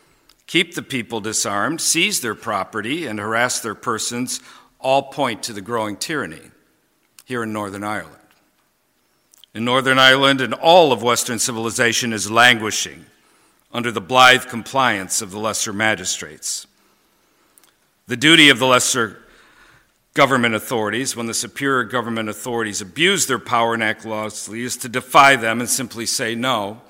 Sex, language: male, English